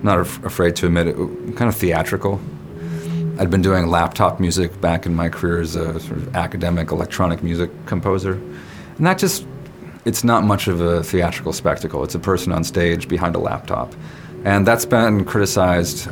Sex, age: male, 30-49